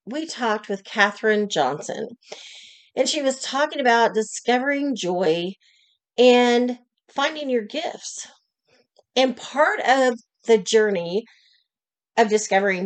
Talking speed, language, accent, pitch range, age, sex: 105 wpm, English, American, 205-275 Hz, 40-59, female